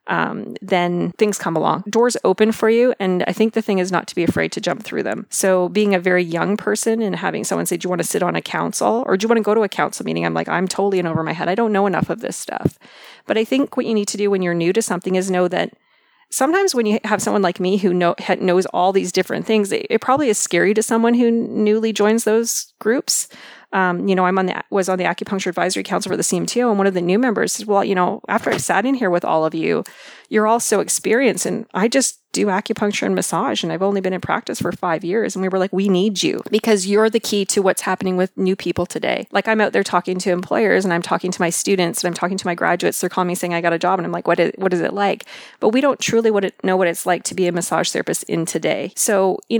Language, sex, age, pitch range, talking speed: English, female, 30-49, 180-220 Hz, 285 wpm